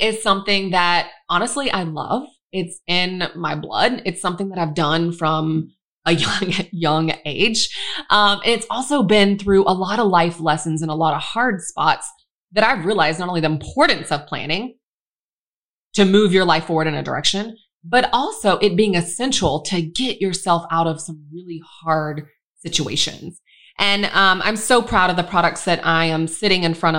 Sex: female